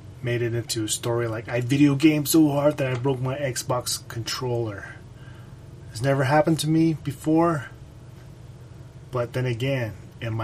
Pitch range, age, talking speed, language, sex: 120-145 Hz, 20-39, 155 wpm, English, male